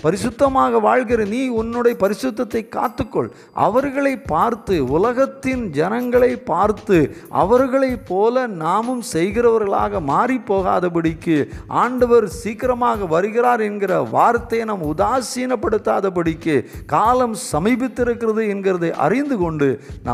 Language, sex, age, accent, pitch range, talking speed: Hindi, male, 50-69, native, 120-170 Hz, 55 wpm